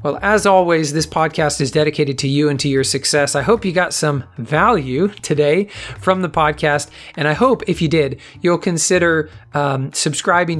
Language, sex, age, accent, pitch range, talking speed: English, male, 40-59, American, 140-170 Hz, 185 wpm